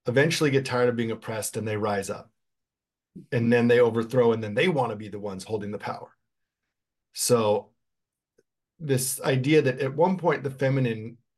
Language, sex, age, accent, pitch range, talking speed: English, male, 40-59, American, 105-125 Hz, 180 wpm